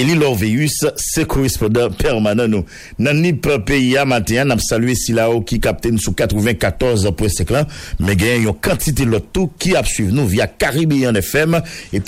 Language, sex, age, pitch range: English, male, 50-69, 110-145 Hz